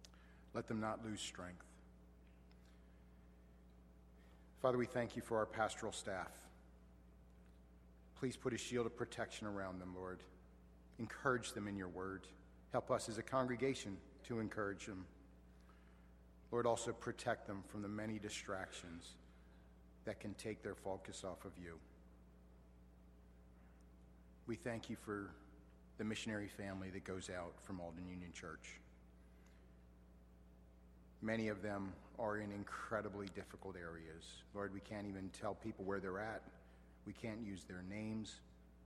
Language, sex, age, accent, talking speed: English, male, 50-69, American, 135 wpm